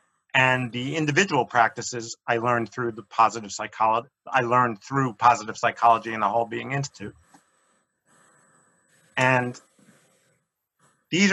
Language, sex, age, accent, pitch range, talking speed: English, male, 40-59, American, 110-130 Hz, 115 wpm